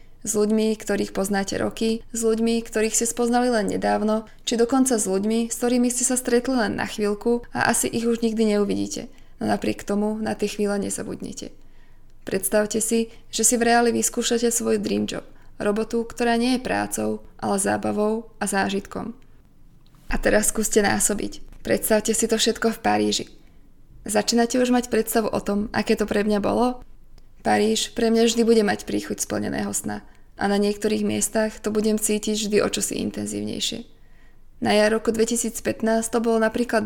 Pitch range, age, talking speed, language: 200-230 Hz, 20-39, 170 wpm, Slovak